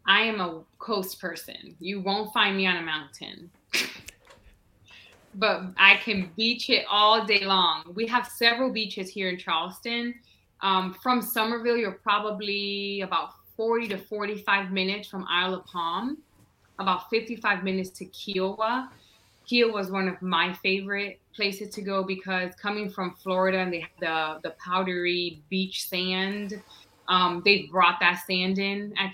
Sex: female